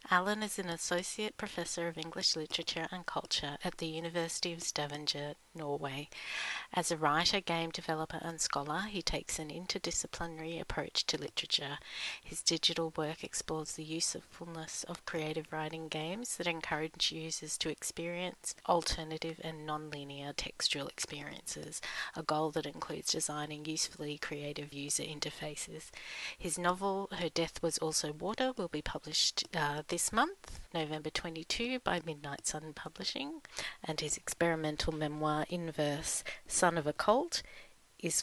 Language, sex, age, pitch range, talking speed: English, female, 30-49, 150-175 Hz, 140 wpm